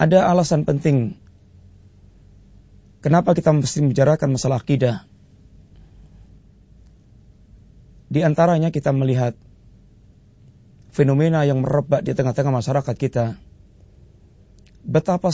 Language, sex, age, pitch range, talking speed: Malay, male, 30-49, 100-145 Hz, 80 wpm